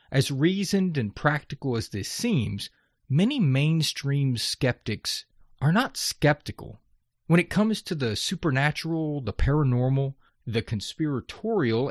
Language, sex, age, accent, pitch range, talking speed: English, male, 30-49, American, 120-170 Hz, 115 wpm